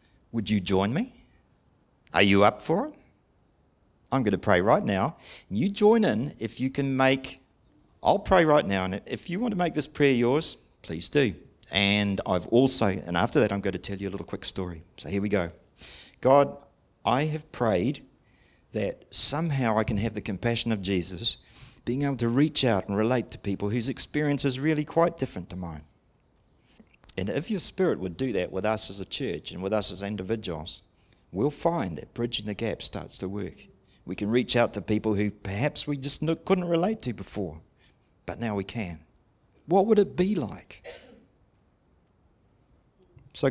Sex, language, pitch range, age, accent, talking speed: male, English, 100-140 Hz, 50-69, Australian, 190 wpm